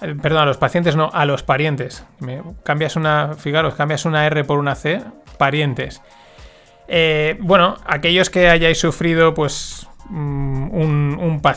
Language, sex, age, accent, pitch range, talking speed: Spanish, male, 20-39, Spanish, 145-170 Hz, 135 wpm